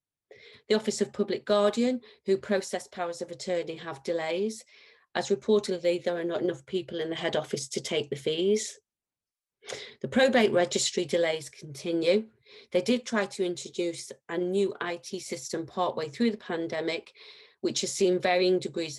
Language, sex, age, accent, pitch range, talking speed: English, female, 40-59, British, 160-205 Hz, 160 wpm